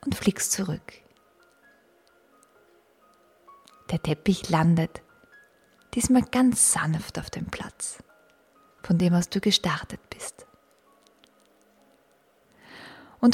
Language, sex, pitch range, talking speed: German, female, 175-240 Hz, 85 wpm